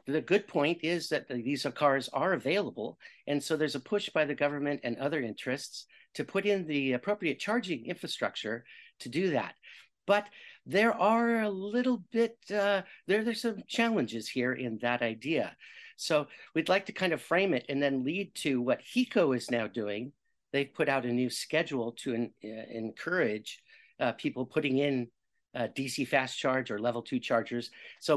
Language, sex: English, male